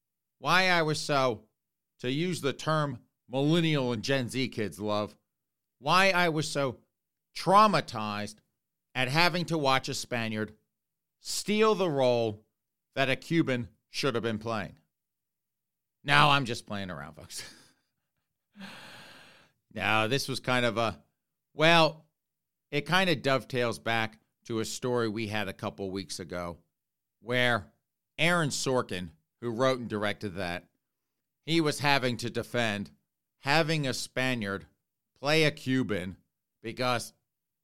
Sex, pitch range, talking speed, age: male, 110-145 Hz, 130 wpm, 50-69